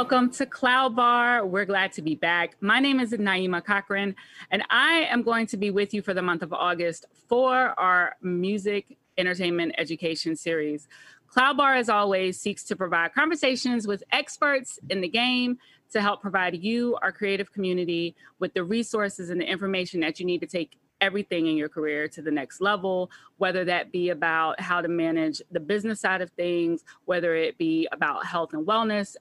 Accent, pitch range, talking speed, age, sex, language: American, 170-225 Hz, 185 wpm, 30-49, female, English